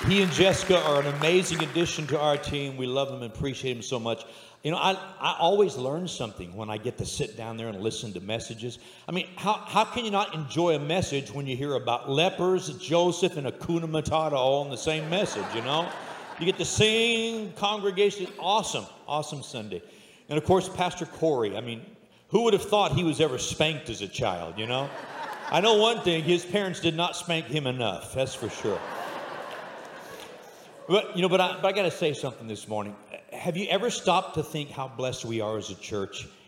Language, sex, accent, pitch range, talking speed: English, male, American, 125-175 Hz, 215 wpm